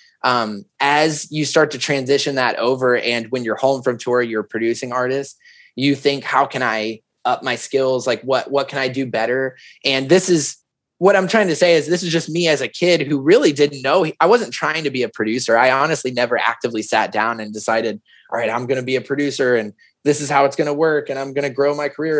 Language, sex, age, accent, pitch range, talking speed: English, male, 20-39, American, 115-145 Hz, 245 wpm